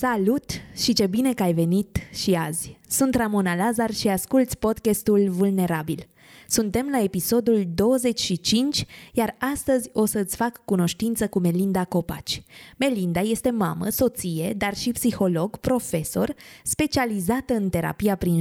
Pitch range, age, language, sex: 185-250 Hz, 20-39, Romanian, female